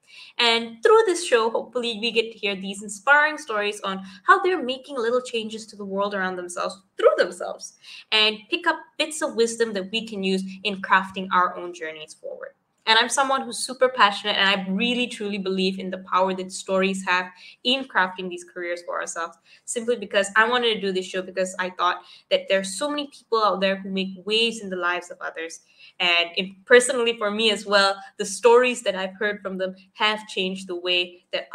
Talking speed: 210 wpm